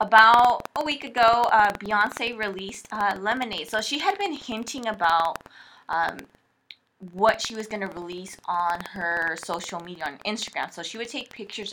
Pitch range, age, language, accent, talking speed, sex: 175-225 Hz, 20-39, English, American, 170 wpm, female